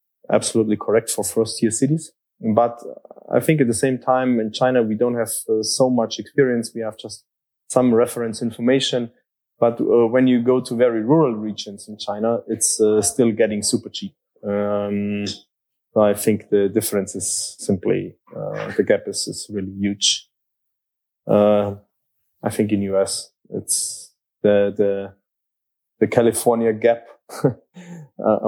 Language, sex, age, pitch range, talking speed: English, male, 20-39, 105-120 Hz, 150 wpm